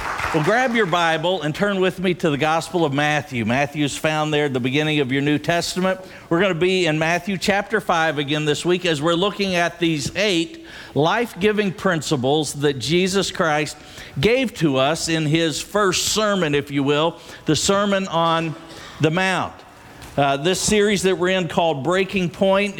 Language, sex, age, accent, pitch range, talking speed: English, male, 50-69, American, 150-195 Hz, 180 wpm